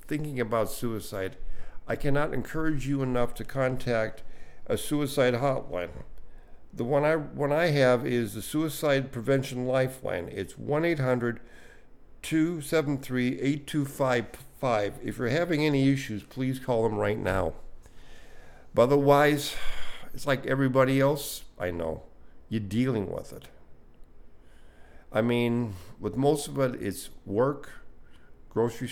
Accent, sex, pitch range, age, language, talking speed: American, male, 100-140 Hz, 50-69, English, 120 wpm